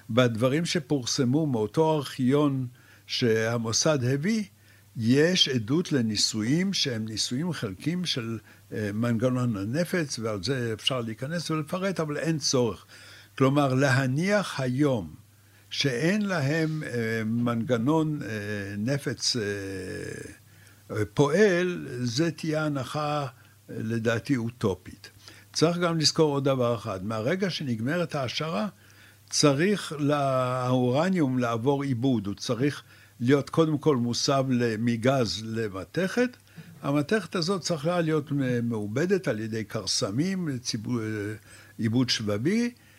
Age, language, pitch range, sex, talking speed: 60-79, Hebrew, 110-155 Hz, male, 95 wpm